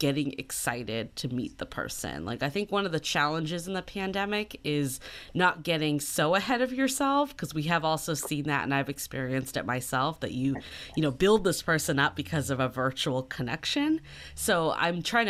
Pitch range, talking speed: 135-175 Hz, 195 wpm